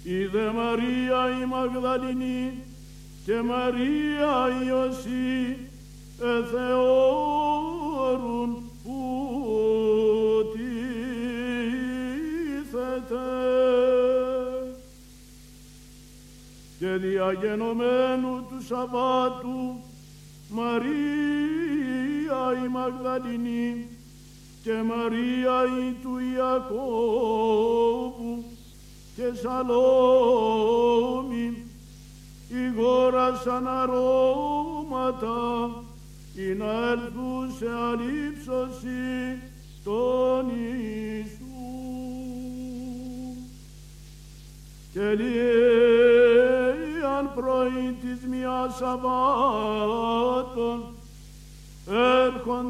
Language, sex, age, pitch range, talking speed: Greek, male, 60-79, 230-255 Hz, 35 wpm